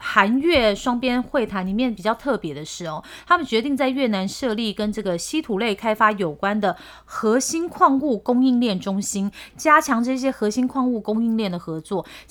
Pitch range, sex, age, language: 185-240 Hz, female, 30-49, Chinese